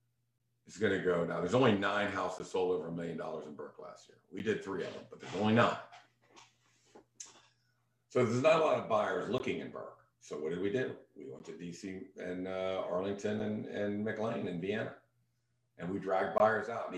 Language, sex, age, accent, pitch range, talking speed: English, male, 50-69, American, 100-160 Hz, 210 wpm